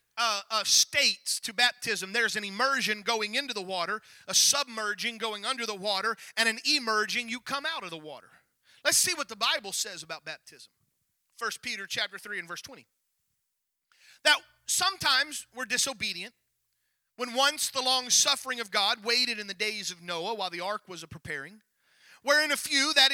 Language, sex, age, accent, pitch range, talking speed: English, male, 40-59, American, 205-270 Hz, 180 wpm